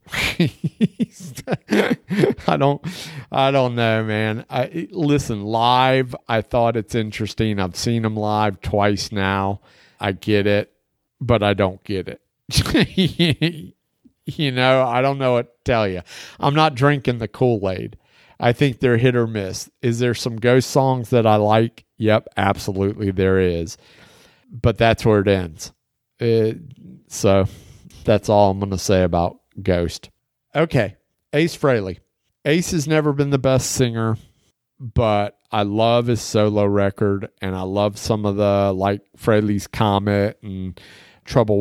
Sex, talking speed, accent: male, 145 wpm, American